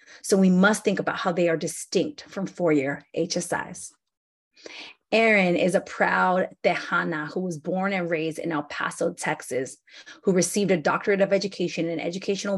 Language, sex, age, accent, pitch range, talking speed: English, female, 30-49, American, 170-205 Hz, 160 wpm